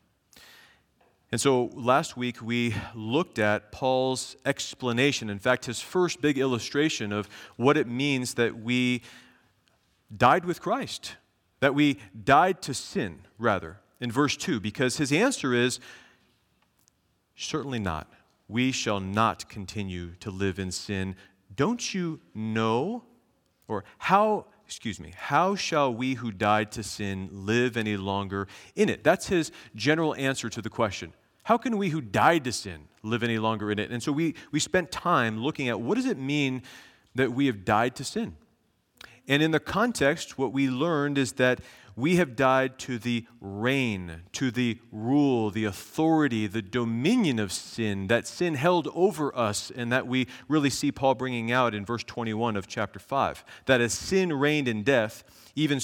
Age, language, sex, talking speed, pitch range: 40-59, English, male, 165 wpm, 105-140 Hz